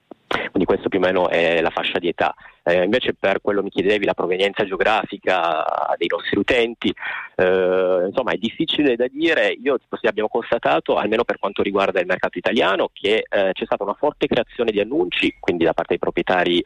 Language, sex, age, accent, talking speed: Italian, male, 30-49, native, 185 wpm